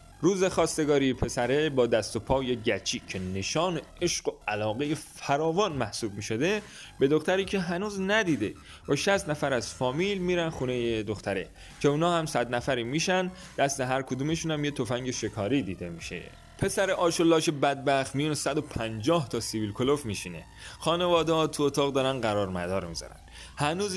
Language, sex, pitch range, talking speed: Persian, male, 110-165 Hz, 160 wpm